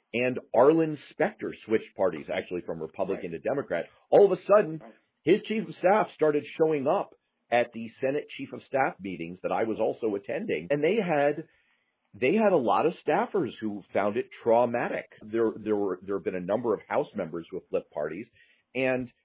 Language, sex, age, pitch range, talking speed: English, male, 40-59, 100-150 Hz, 195 wpm